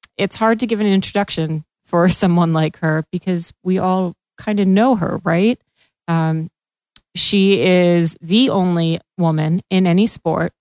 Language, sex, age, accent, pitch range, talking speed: English, female, 30-49, American, 170-200 Hz, 155 wpm